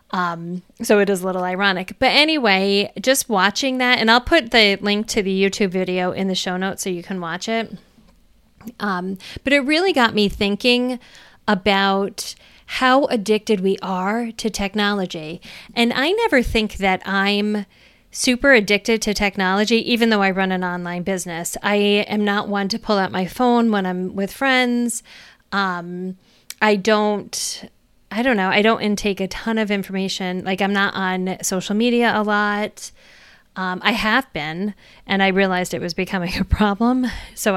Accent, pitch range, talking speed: American, 190-230 Hz, 170 wpm